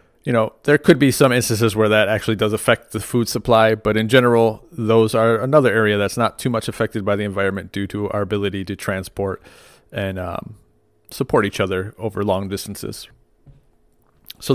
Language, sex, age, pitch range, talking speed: English, male, 30-49, 100-115 Hz, 185 wpm